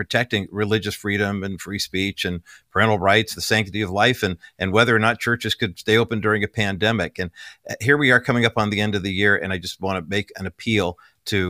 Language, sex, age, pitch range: English, male, 50-69, 90-110 Hz